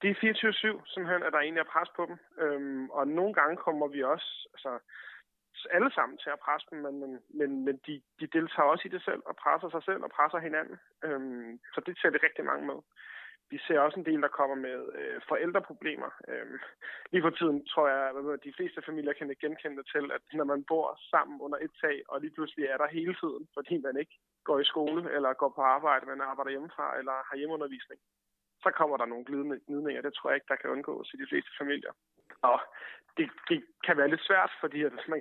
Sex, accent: male, native